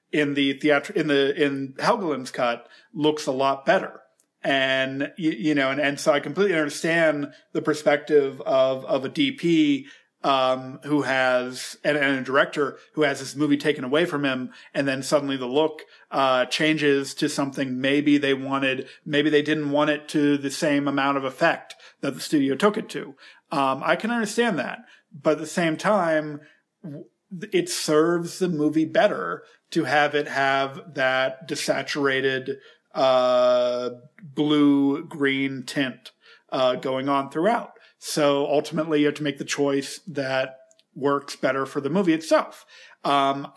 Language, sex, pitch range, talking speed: English, male, 135-155 Hz, 165 wpm